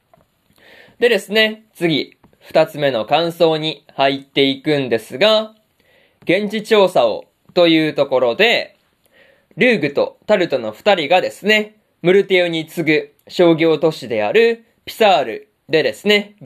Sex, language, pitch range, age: male, Japanese, 145-210 Hz, 20-39